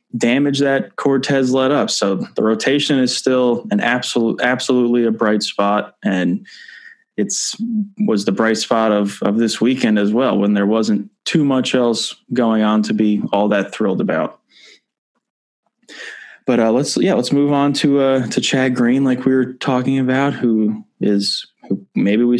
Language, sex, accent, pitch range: English, male, American, 105-135 Hz